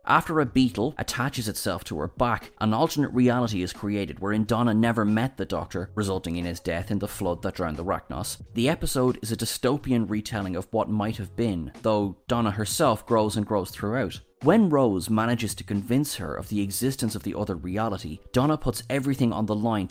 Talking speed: 200 wpm